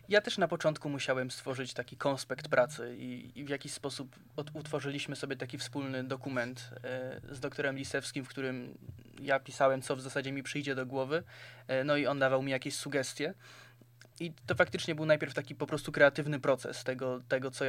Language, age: Polish, 20-39